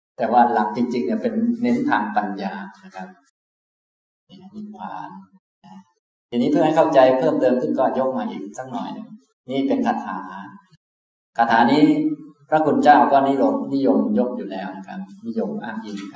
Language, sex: Thai, male